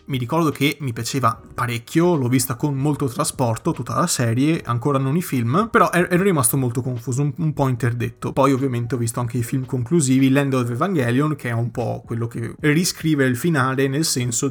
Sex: male